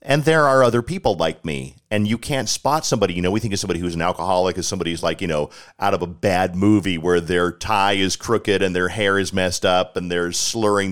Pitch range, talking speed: 90-105 Hz, 255 wpm